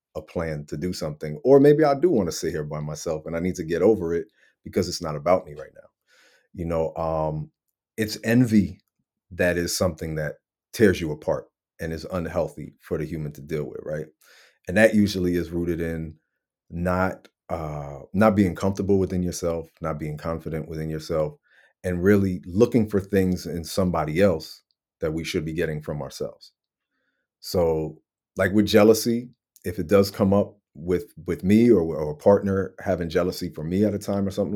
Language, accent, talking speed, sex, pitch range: English, American, 190 wpm, male, 80-105 Hz